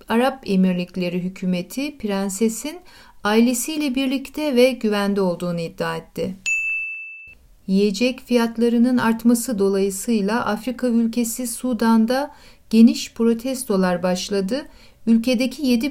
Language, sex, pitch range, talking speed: Turkish, female, 205-255 Hz, 85 wpm